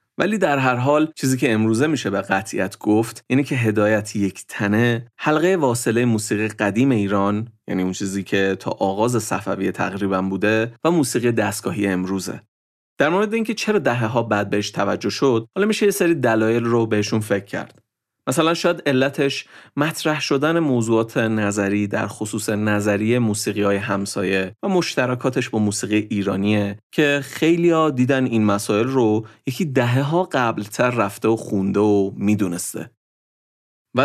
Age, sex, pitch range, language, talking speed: 30-49, male, 100-130 Hz, Persian, 150 wpm